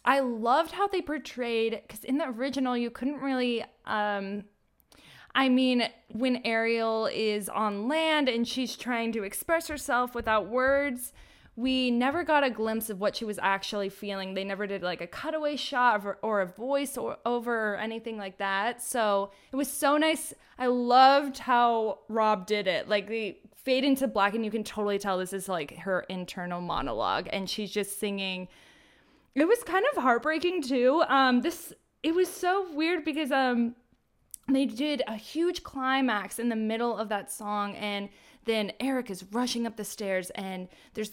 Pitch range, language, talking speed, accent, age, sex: 205-265 Hz, English, 175 wpm, American, 20-39, female